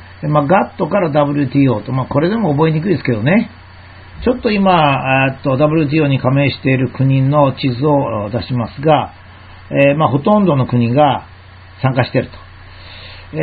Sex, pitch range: male, 120-180 Hz